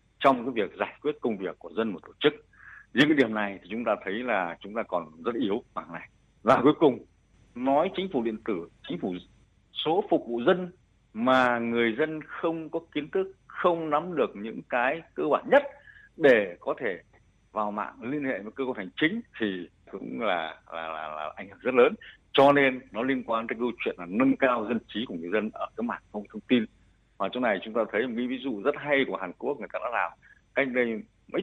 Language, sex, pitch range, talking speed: Vietnamese, male, 105-145 Hz, 235 wpm